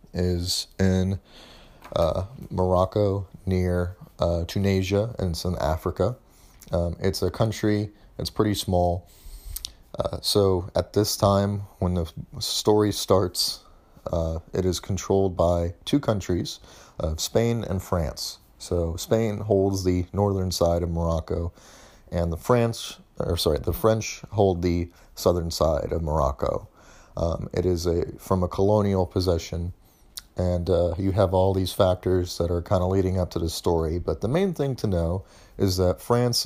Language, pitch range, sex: English, 85-95 Hz, male